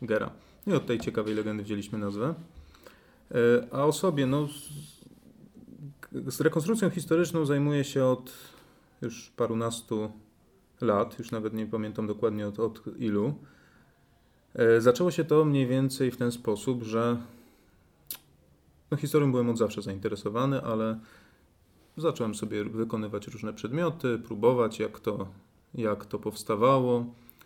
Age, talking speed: 30-49, 120 wpm